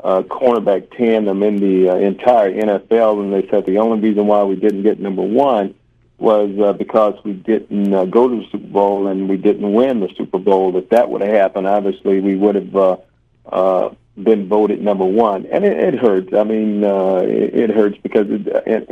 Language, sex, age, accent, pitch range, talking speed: English, male, 50-69, American, 100-115 Hz, 205 wpm